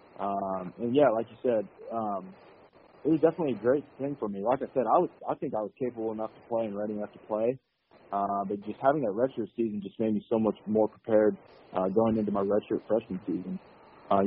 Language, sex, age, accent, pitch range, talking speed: English, male, 20-39, American, 100-115 Hz, 230 wpm